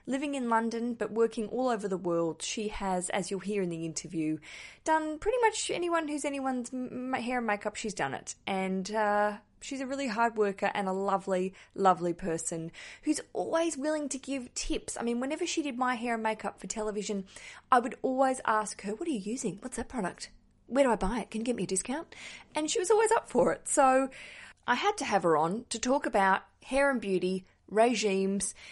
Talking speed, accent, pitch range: 215 wpm, Australian, 185-270 Hz